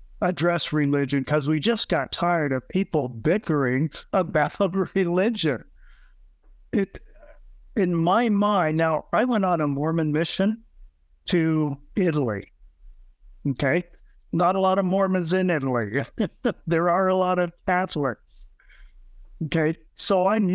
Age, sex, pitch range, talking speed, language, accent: 50-69, male, 135-175 Hz, 125 wpm, English, American